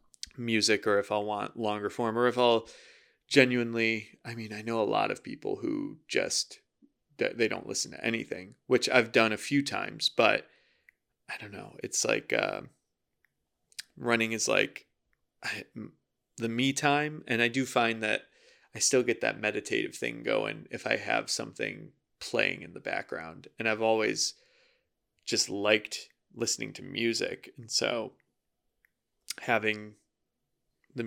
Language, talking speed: English, 150 wpm